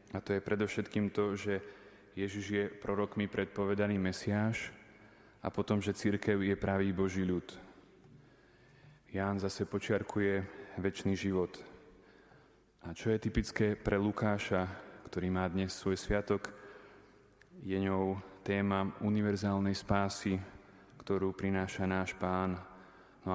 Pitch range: 95-105 Hz